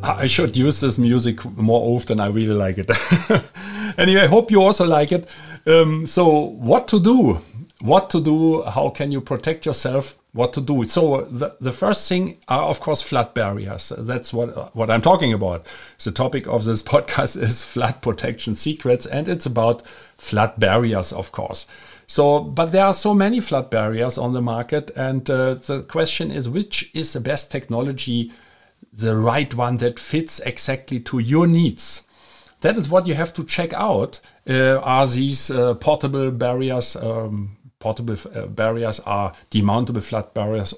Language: English